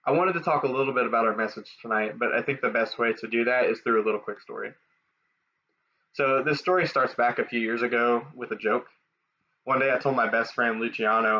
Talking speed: 240 wpm